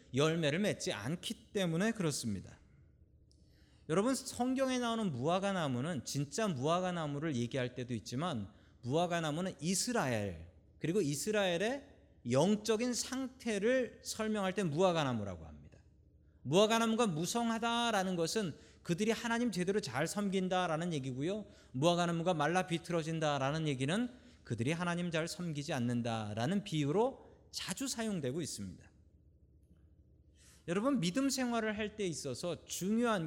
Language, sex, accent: Korean, male, native